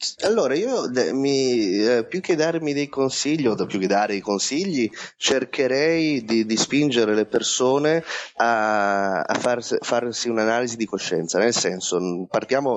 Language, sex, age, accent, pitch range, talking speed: Italian, male, 30-49, native, 95-130 Hz, 140 wpm